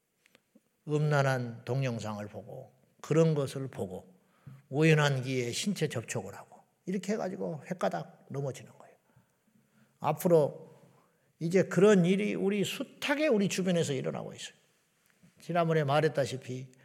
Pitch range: 120-170 Hz